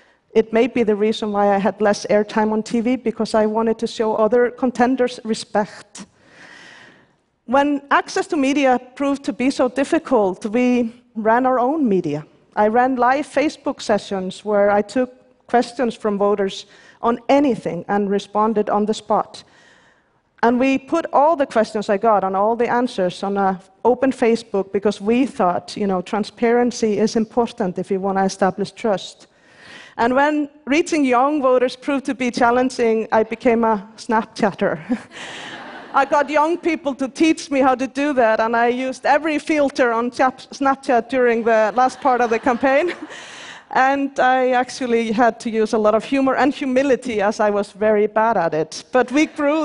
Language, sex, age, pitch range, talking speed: Portuguese, female, 40-59, 210-260 Hz, 170 wpm